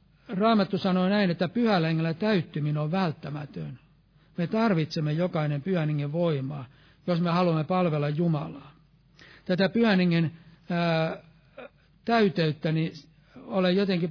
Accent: native